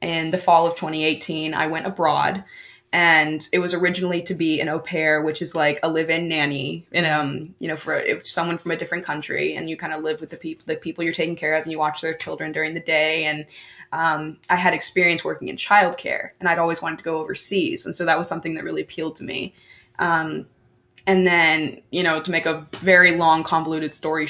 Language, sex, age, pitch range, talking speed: English, female, 20-39, 155-175 Hz, 230 wpm